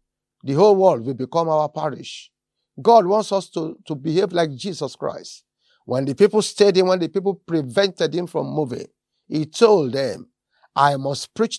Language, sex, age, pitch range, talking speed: English, male, 50-69, 150-200 Hz, 175 wpm